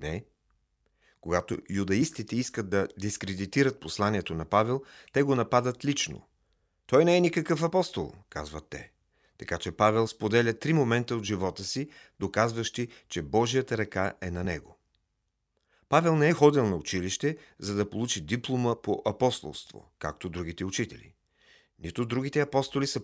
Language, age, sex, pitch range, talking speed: Bulgarian, 40-59, male, 100-140 Hz, 145 wpm